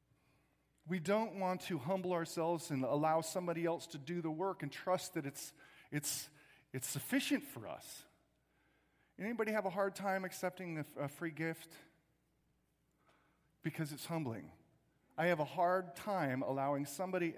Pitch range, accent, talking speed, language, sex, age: 120-170 Hz, American, 150 wpm, English, male, 40-59